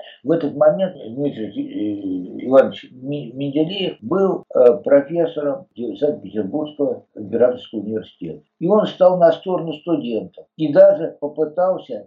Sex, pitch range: male, 135-190 Hz